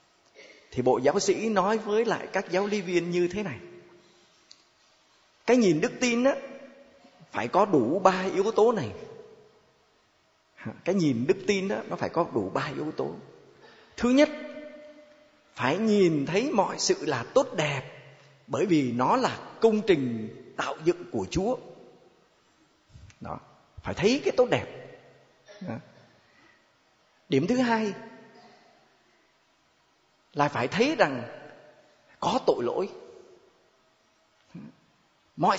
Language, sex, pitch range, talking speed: Vietnamese, male, 185-295 Hz, 125 wpm